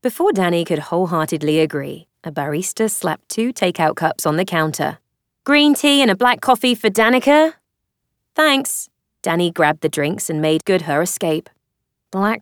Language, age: English, 20-39